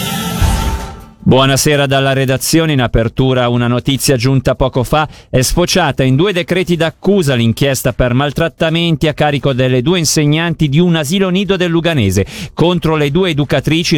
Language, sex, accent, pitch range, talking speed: Italian, male, native, 125-170 Hz, 145 wpm